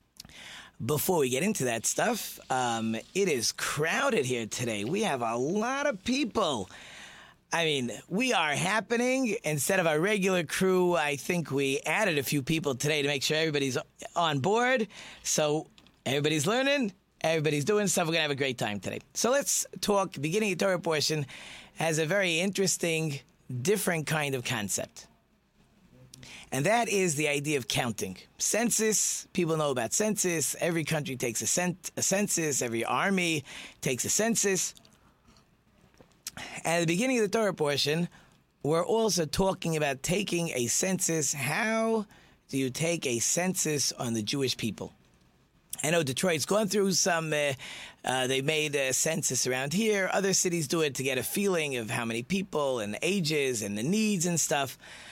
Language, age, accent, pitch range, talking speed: English, 30-49, American, 140-195 Hz, 165 wpm